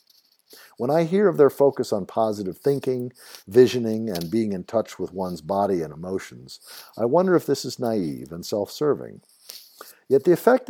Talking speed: 170 wpm